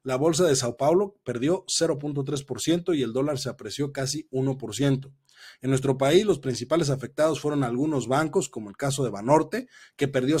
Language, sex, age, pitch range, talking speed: Spanish, male, 40-59, 125-155 Hz, 175 wpm